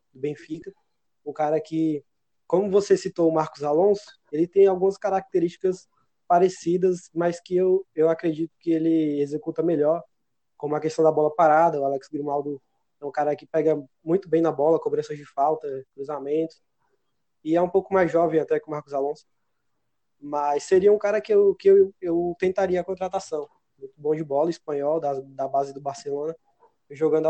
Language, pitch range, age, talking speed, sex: Portuguese, 150-195 Hz, 20-39, 180 wpm, male